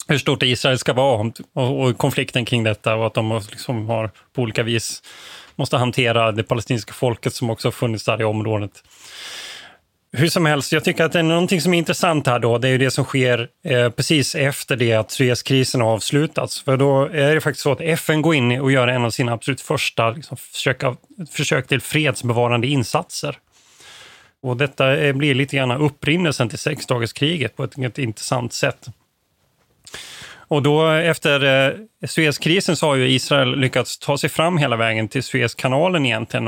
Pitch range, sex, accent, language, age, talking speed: 120-145 Hz, male, native, Swedish, 30-49, 185 wpm